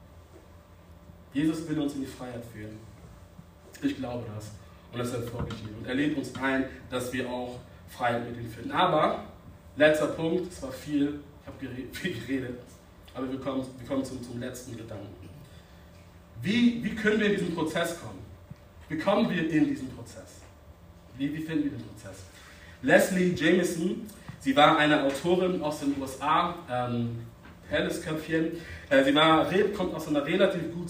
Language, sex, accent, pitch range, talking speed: German, male, German, 105-160 Hz, 160 wpm